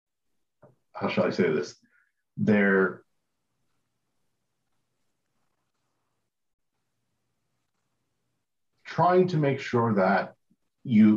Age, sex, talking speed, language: 50-69, male, 65 wpm, English